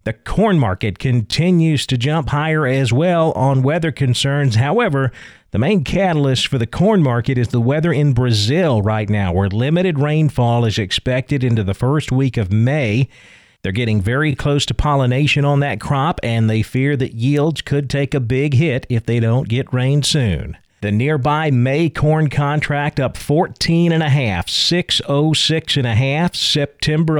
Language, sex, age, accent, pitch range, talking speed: English, male, 40-59, American, 120-150 Hz, 170 wpm